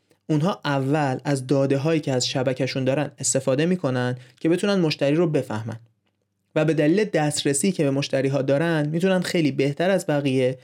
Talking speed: 170 wpm